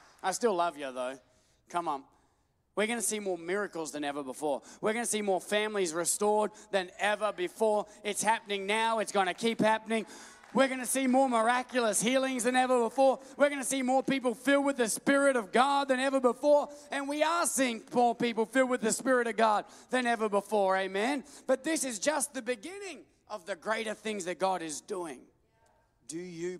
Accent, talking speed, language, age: Australian, 205 wpm, English, 30-49